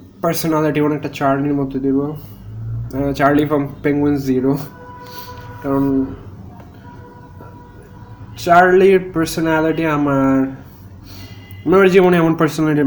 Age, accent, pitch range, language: 20-39, native, 125-150 Hz, Bengali